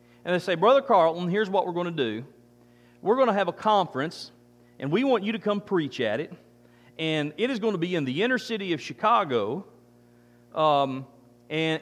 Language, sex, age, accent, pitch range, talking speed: English, male, 40-59, American, 120-205 Hz, 205 wpm